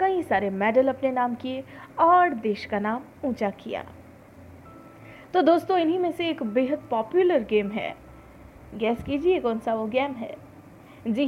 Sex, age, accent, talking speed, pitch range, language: female, 30-49, native, 160 wpm, 220-320 Hz, Hindi